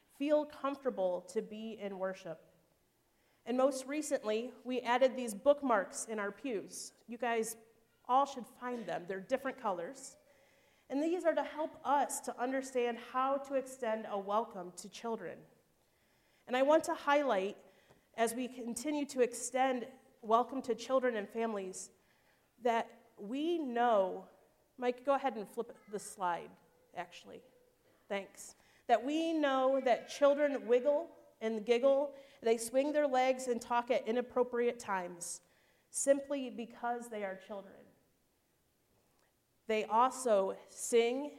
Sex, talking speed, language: female, 135 wpm, English